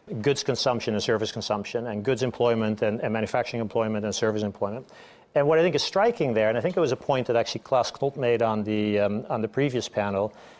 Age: 50-69